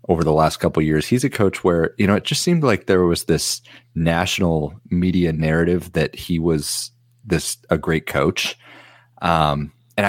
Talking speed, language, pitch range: 185 wpm, English, 80-120 Hz